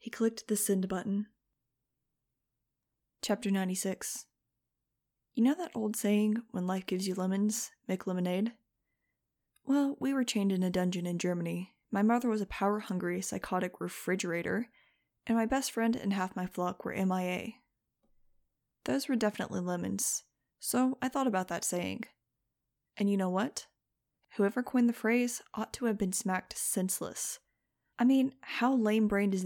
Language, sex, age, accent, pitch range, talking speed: English, female, 20-39, American, 185-230 Hz, 150 wpm